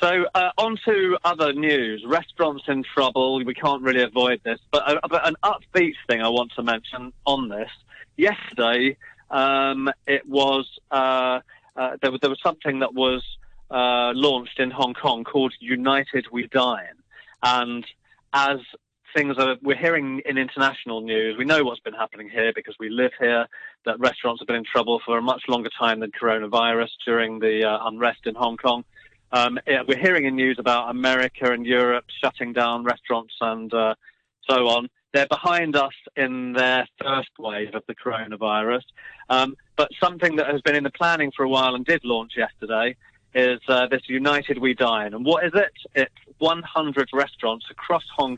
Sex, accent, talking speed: male, British, 180 wpm